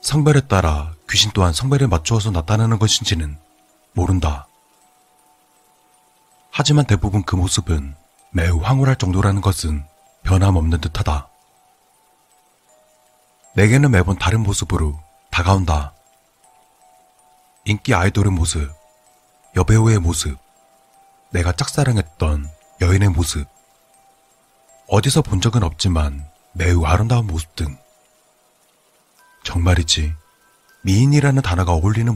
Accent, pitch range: native, 80-130 Hz